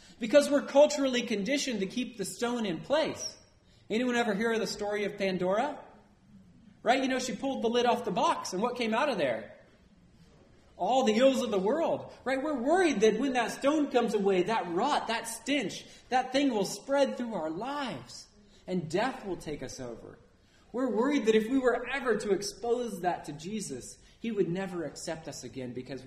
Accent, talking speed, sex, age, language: American, 195 wpm, male, 30-49, English